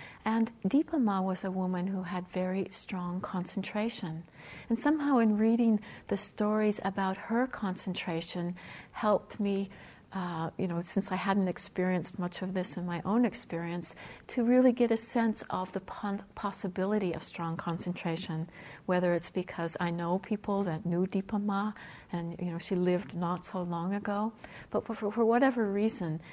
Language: English